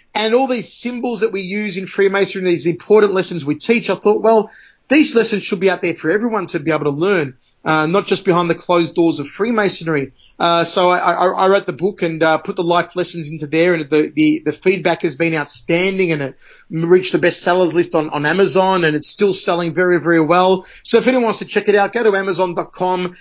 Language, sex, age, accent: English, male, 30-49, Australian